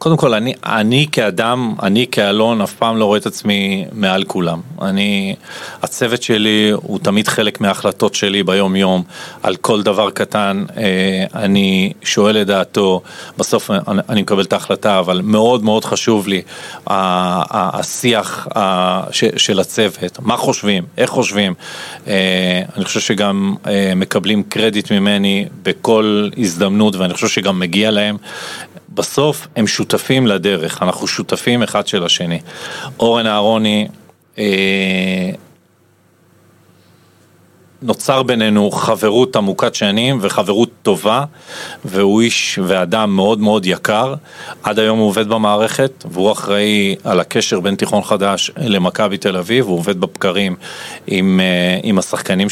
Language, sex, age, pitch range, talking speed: Hebrew, male, 40-59, 95-110 Hz, 125 wpm